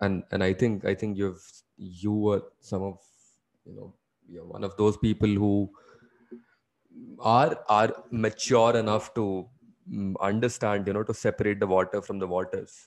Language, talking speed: English, 160 wpm